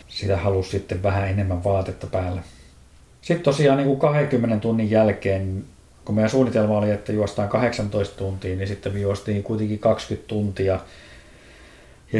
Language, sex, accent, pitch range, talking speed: Finnish, male, native, 100-115 Hz, 150 wpm